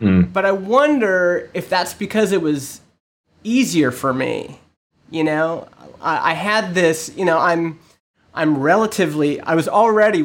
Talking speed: 145 wpm